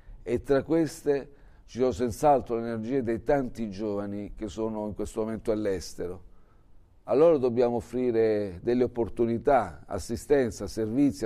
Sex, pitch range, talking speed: male, 105-125 Hz, 130 wpm